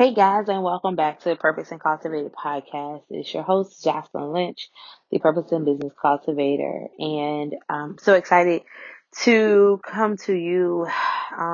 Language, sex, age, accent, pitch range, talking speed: English, female, 20-39, American, 150-175 Hz, 155 wpm